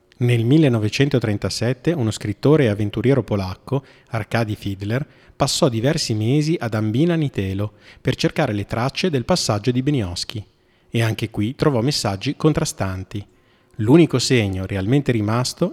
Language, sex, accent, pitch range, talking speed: Italian, male, native, 105-140 Hz, 120 wpm